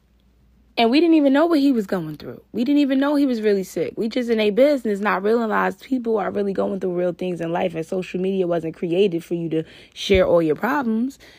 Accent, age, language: American, 20-39, English